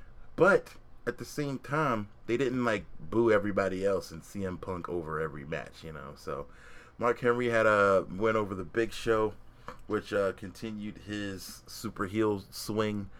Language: English